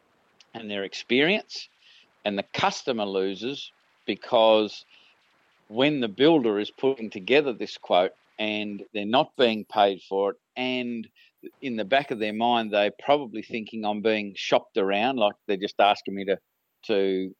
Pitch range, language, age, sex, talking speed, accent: 100-115 Hz, English, 50-69, male, 155 wpm, Australian